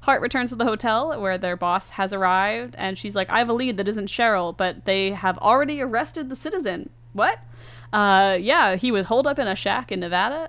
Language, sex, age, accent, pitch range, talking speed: English, female, 10-29, American, 165-210 Hz, 225 wpm